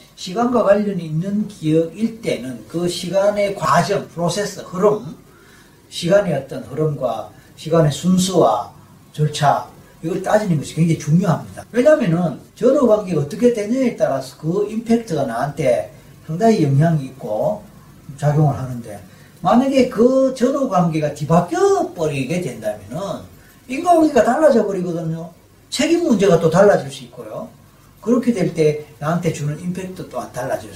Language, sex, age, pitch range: Korean, male, 40-59, 150-220 Hz